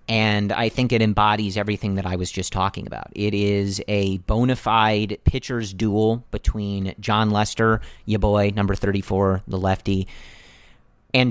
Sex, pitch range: male, 100-115 Hz